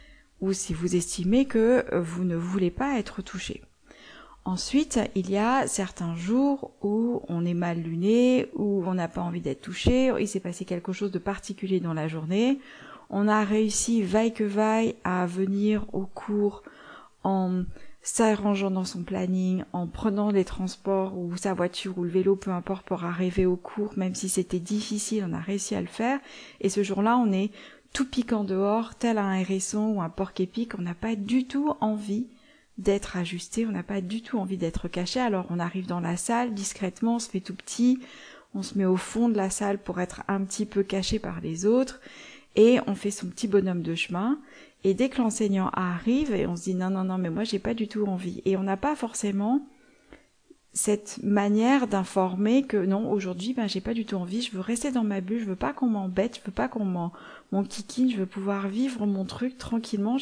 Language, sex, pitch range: French, female, 185-230 Hz